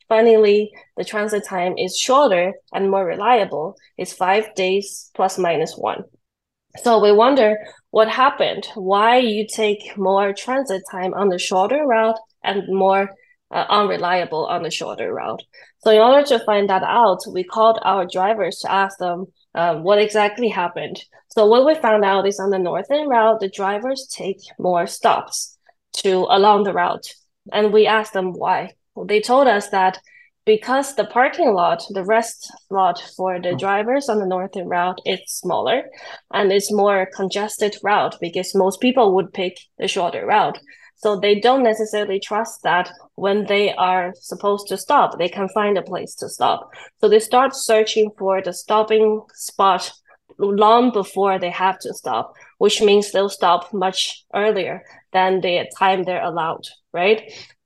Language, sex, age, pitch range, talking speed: English, female, 20-39, 190-220 Hz, 165 wpm